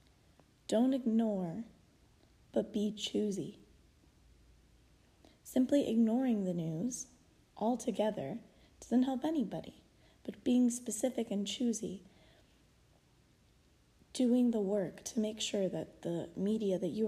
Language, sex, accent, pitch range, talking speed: English, female, American, 185-230 Hz, 100 wpm